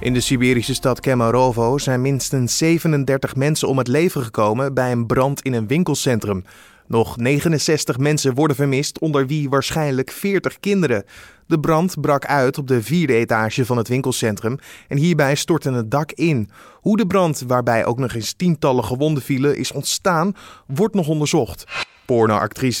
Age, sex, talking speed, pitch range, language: 20-39, male, 165 wpm, 120-145 Hz, Dutch